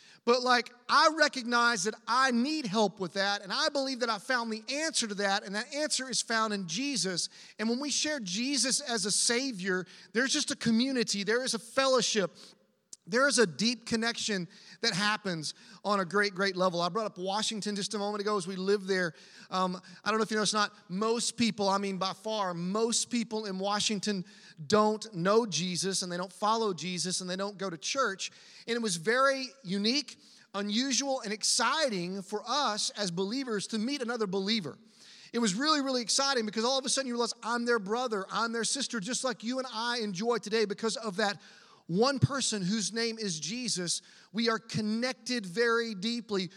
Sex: male